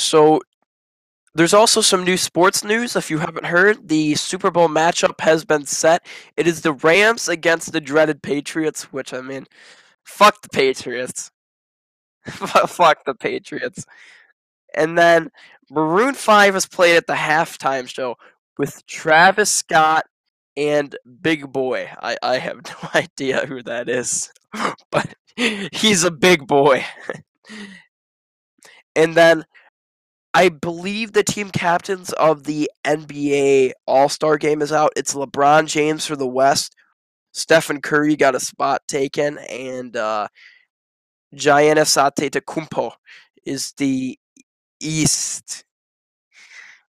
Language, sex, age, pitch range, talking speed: English, male, 10-29, 145-185 Hz, 125 wpm